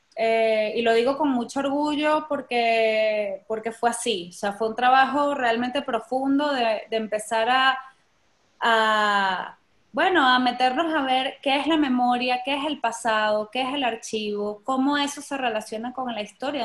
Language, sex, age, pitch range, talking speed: Spanish, female, 20-39, 220-270 Hz, 170 wpm